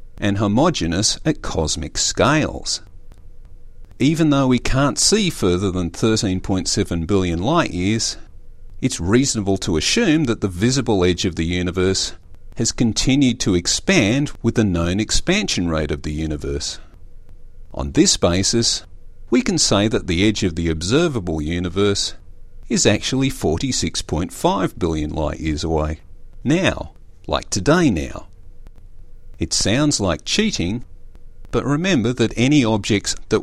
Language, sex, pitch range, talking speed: English, male, 90-115 Hz, 130 wpm